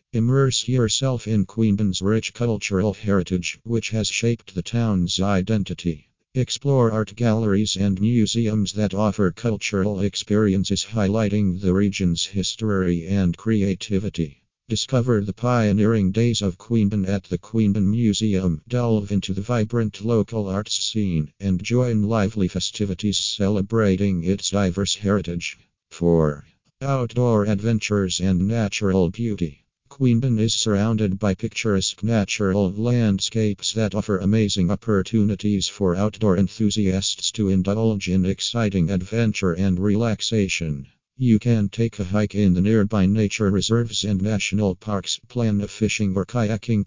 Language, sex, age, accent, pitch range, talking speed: English, male, 50-69, American, 95-110 Hz, 125 wpm